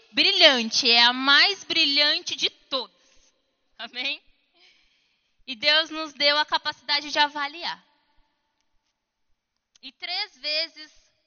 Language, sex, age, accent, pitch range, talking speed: Portuguese, female, 10-29, Brazilian, 210-295 Hz, 100 wpm